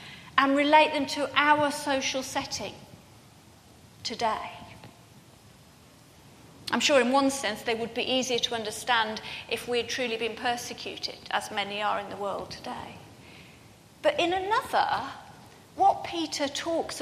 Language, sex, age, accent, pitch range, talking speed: English, female, 40-59, British, 245-300 Hz, 135 wpm